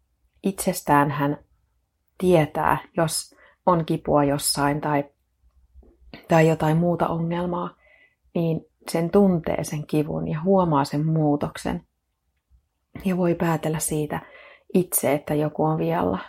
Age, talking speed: 30-49, 110 wpm